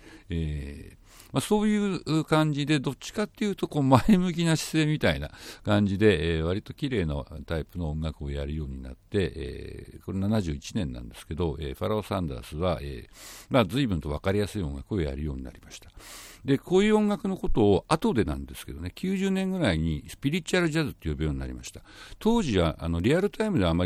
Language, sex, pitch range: Japanese, male, 80-110 Hz